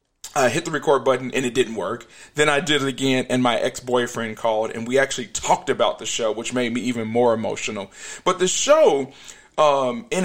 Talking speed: 210 wpm